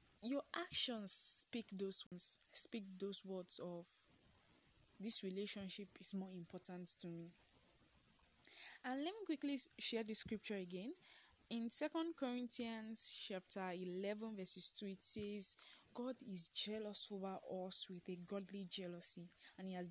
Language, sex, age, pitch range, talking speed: English, female, 10-29, 180-215 Hz, 135 wpm